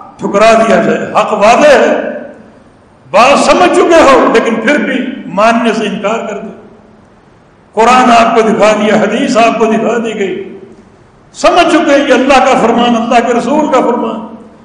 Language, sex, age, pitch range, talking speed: English, male, 60-79, 220-285 Hz, 150 wpm